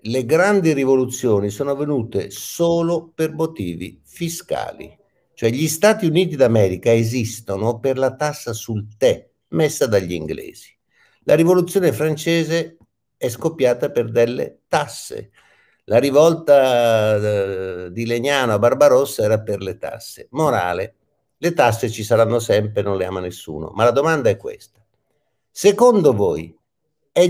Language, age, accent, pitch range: Italian, 50-69, native, 115-165 Hz